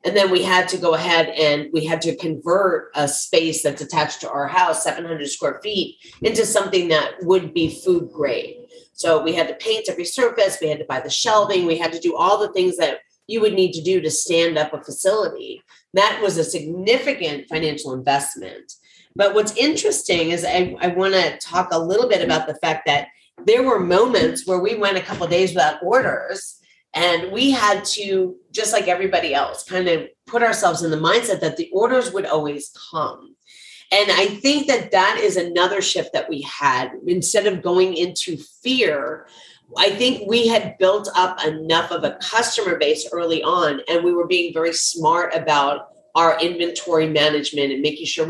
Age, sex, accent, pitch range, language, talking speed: 30-49, female, American, 160-205 Hz, English, 195 wpm